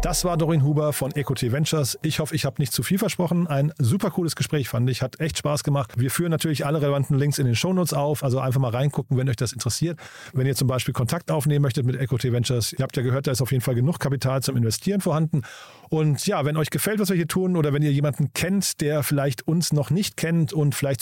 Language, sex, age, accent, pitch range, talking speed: German, male, 40-59, German, 130-160 Hz, 255 wpm